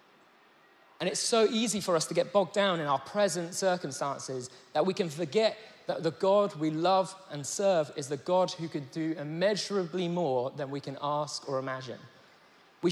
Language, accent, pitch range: English, British, 145-185 Hz